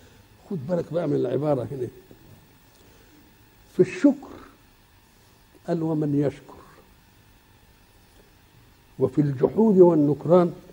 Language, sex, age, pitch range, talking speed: Arabic, male, 60-79, 130-200 Hz, 80 wpm